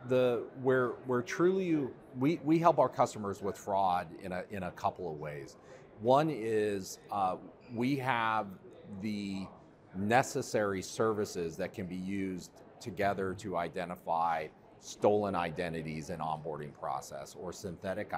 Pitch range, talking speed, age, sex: 85-115 Hz, 130 wpm, 40-59, male